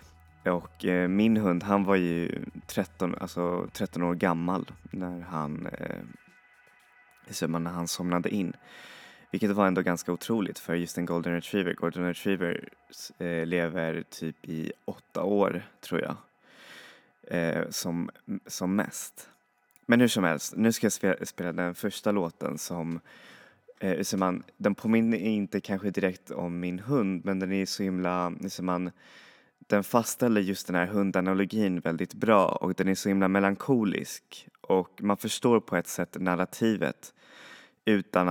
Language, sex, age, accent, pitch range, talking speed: Swedish, male, 20-39, native, 85-100 Hz, 135 wpm